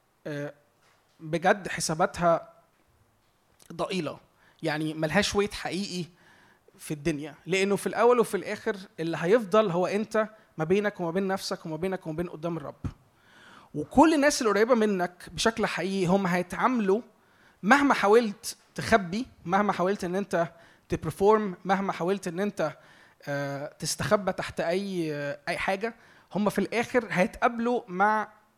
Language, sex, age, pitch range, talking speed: Arabic, male, 20-39, 165-210 Hz, 120 wpm